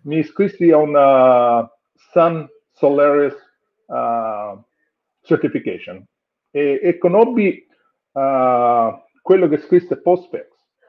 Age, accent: 50-69, native